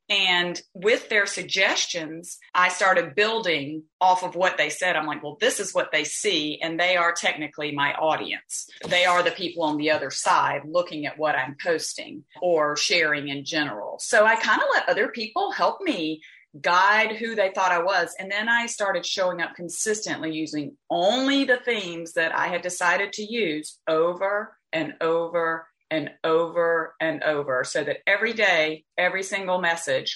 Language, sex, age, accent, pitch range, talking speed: English, female, 40-59, American, 155-205 Hz, 175 wpm